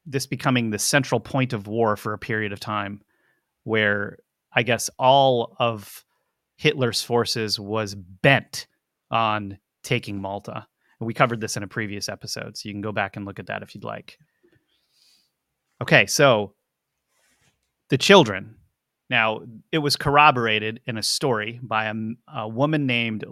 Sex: male